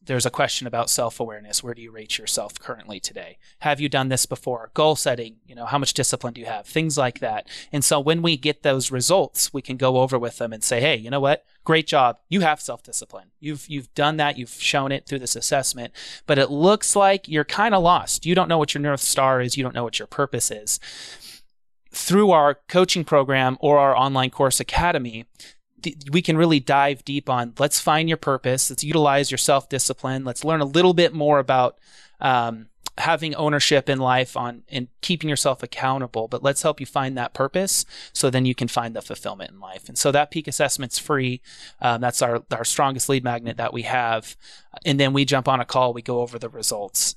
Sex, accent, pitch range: male, American, 125-150 Hz